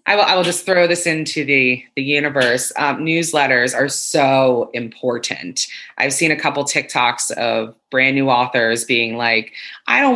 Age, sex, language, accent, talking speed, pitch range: 20-39, female, English, American, 170 wpm, 130-175 Hz